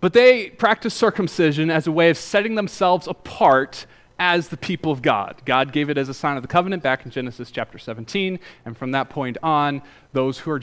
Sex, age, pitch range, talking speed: male, 30-49, 135-195 Hz, 215 wpm